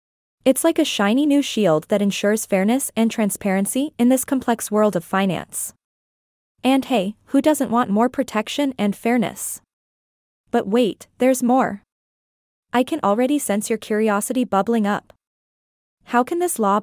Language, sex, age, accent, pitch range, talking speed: English, female, 20-39, American, 205-260 Hz, 150 wpm